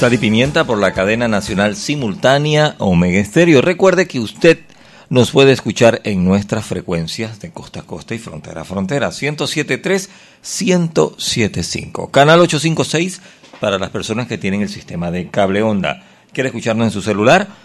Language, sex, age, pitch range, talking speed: Spanish, male, 50-69, 105-165 Hz, 155 wpm